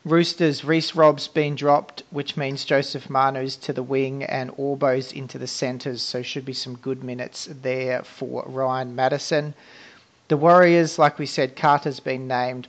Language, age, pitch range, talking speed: English, 40-59, 125-145 Hz, 165 wpm